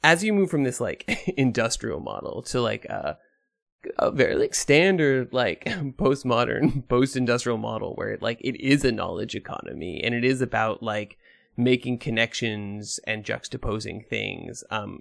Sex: male